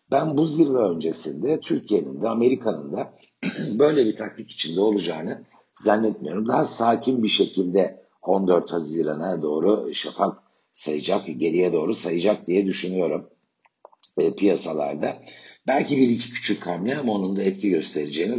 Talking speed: 125 wpm